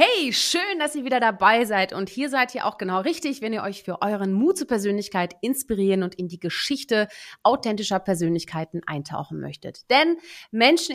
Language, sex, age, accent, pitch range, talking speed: German, female, 30-49, German, 190-255 Hz, 180 wpm